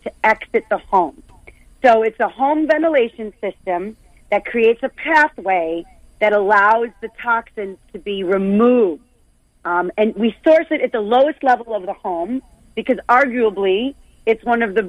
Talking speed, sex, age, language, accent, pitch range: 155 wpm, female, 40-59, English, American, 210-255 Hz